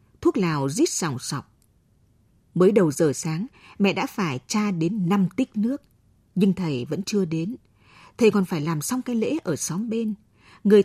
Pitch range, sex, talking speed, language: 155-215 Hz, female, 190 wpm, Vietnamese